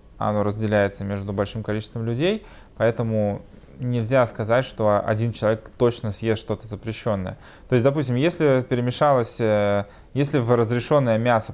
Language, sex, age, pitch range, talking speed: Russian, male, 20-39, 105-120 Hz, 130 wpm